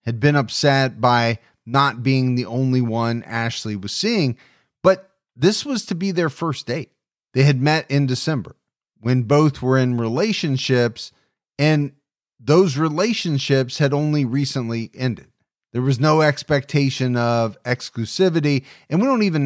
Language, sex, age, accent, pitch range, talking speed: English, male, 30-49, American, 120-150 Hz, 145 wpm